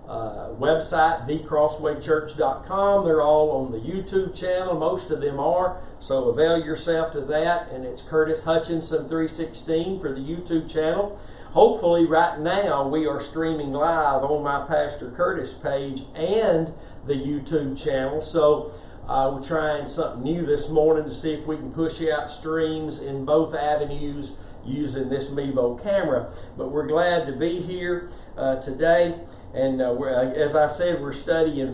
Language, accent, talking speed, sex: English, American, 155 wpm, male